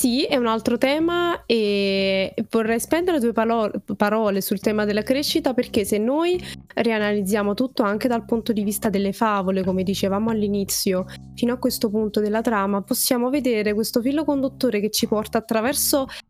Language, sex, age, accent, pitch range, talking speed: Italian, female, 20-39, native, 200-250 Hz, 160 wpm